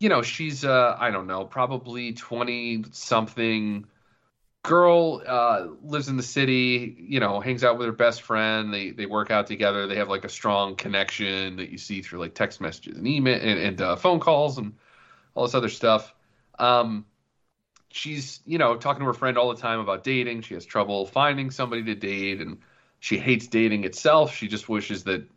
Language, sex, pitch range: English, male, 105-130 Hz